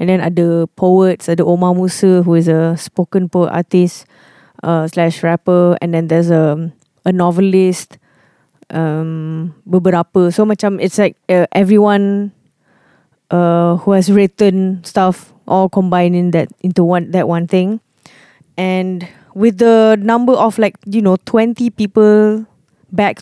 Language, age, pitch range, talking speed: English, 20-39, 175-205 Hz, 140 wpm